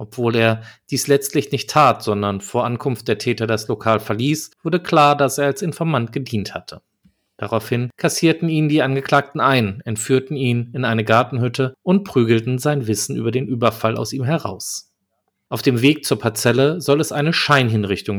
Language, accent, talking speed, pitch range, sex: German, German, 170 wpm, 110-145 Hz, male